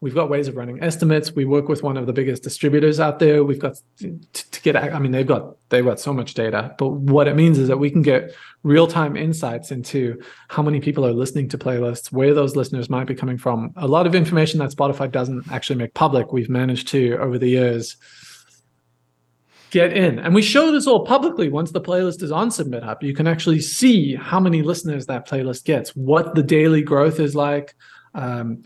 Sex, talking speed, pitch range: male, 220 wpm, 130-160 Hz